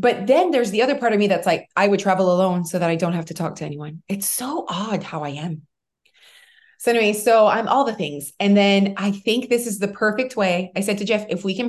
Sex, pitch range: female, 180-230 Hz